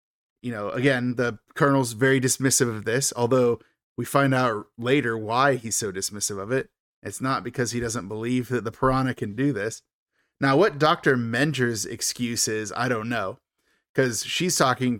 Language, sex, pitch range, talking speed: English, male, 120-140 Hz, 175 wpm